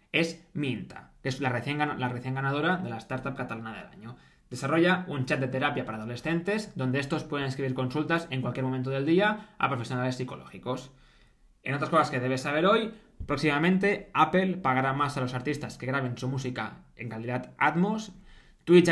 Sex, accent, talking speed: male, Spanish, 180 wpm